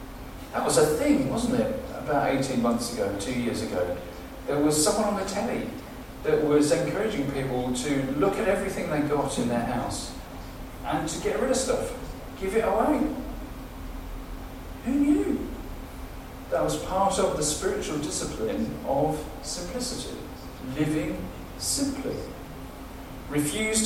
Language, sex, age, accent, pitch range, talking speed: English, male, 40-59, British, 130-160 Hz, 140 wpm